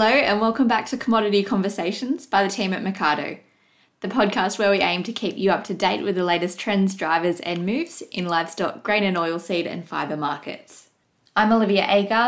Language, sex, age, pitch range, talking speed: English, female, 10-29, 180-210 Hz, 205 wpm